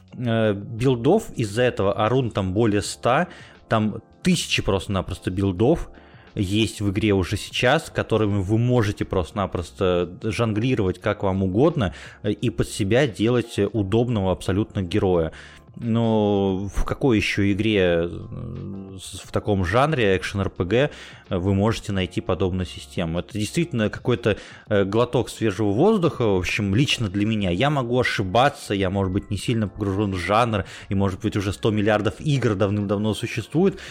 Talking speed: 135 wpm